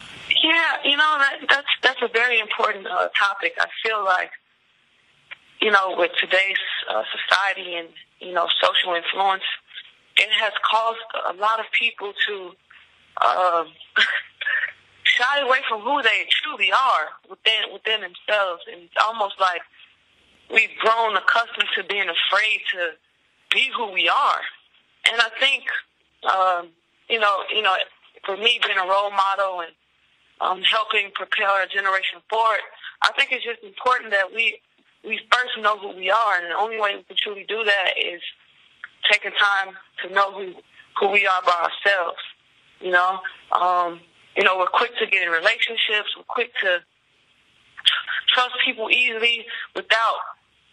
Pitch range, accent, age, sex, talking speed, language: 190-255 Hz, American, 20-39, female, 155 wpm, English